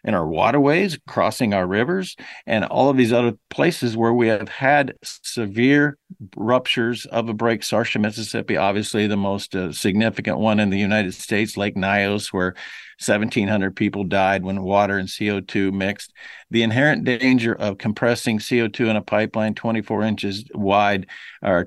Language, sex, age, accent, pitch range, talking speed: English, male, 50-69, American, 105-135 Hz, 160 wpm